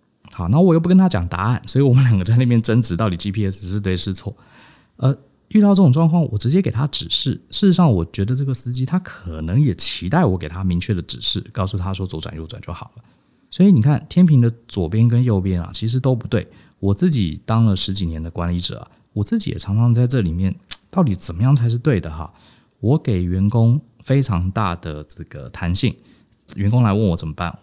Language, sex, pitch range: Chinese, male, 90-120 Hz